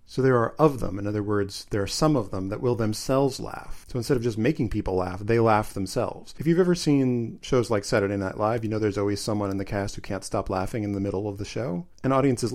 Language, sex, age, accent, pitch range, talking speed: English, male, 40-59, American, 100-125 Hz, 270 wpm